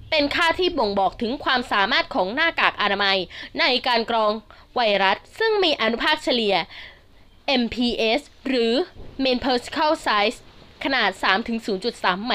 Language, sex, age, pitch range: Thai, female, 20-39, 215-285 Hz